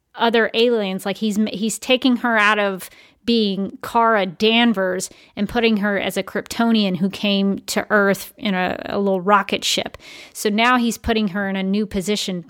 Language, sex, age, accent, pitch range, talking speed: English, female, 30-49, American, 195-230 Hz, 180 wpm